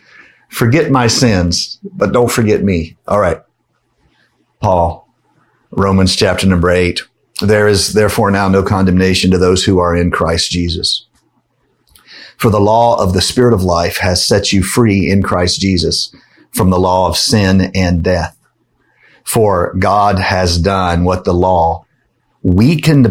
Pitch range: 90-110 Hz